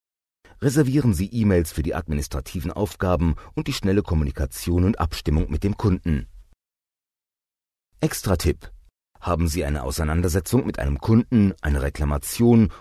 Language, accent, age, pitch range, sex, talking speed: German, German, 40-59, 80-110 Hz, male, 120 wpm